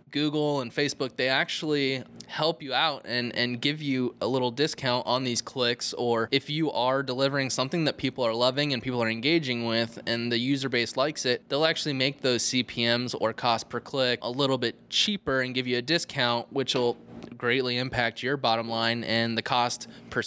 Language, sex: English, male